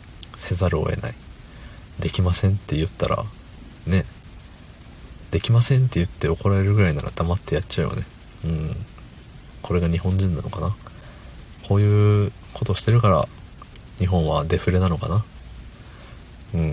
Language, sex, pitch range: Japanese, male, 85-110 Hz